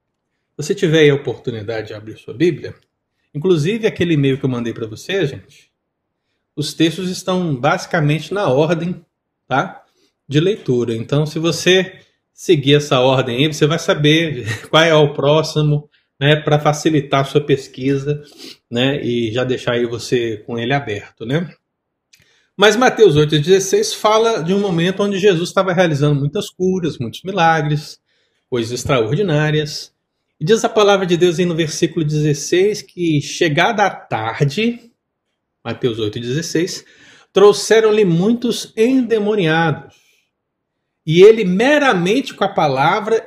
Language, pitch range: Portuguese, 145-195 Hz